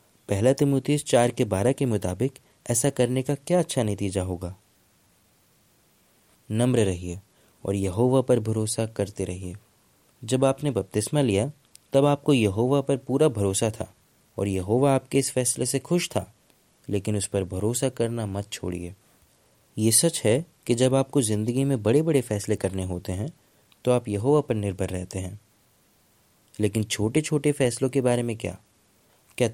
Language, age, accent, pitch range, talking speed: Hindi, 20-39, native, 100-135 Hz, 160 wpm